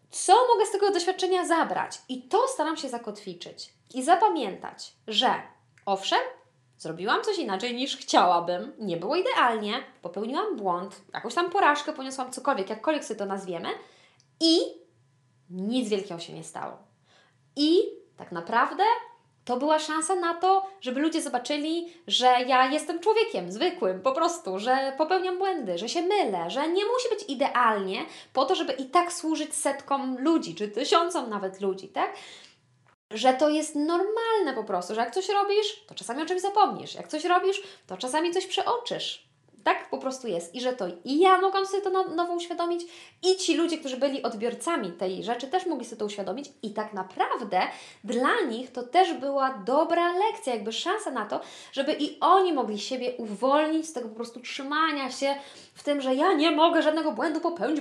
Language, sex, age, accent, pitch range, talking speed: Polish, female, 20-39, native, 235-350 Hz, 170 wpm